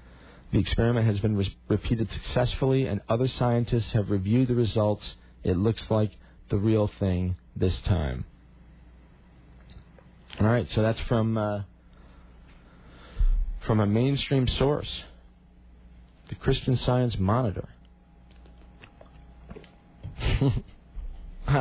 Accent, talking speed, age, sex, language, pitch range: American, 100 wpm, 40-59, male, English, 80-115 Hz